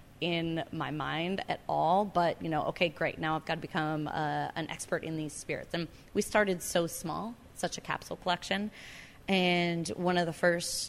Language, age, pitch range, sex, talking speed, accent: English, 20-39, 155-180 Hz, female, 195 wpm, American